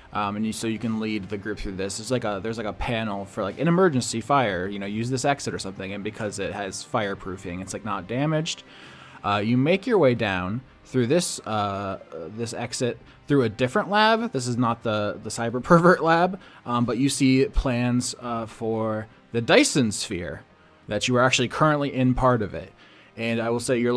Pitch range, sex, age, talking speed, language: 110-135 Hz, male, 20-39, 215 wpm, English